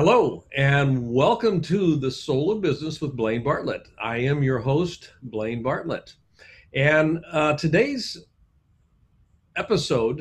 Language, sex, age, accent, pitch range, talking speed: English, male, 50-69, American, 120-155 Hz, 125 wpm